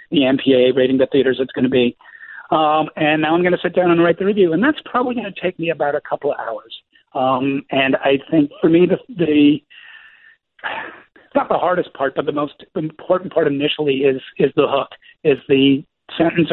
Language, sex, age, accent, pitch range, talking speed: English, male, 60-79, American, 130-160 Hz, 210 wpm